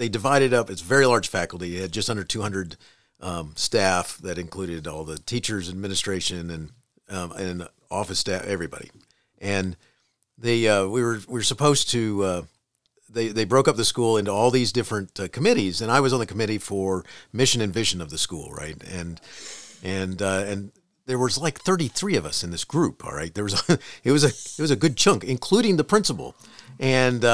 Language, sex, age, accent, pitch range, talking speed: English, male, 40-59, American, 100-140 Hz, 200 wpm